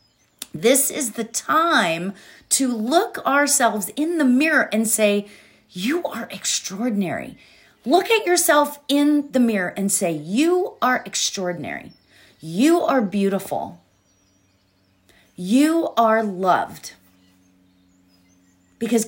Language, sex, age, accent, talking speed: English, female, 40-59, American, 105 wpm